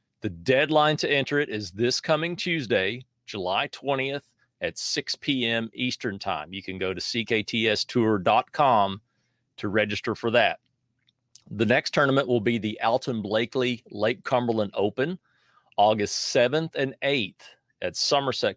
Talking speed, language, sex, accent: 135 wpm, English, male, American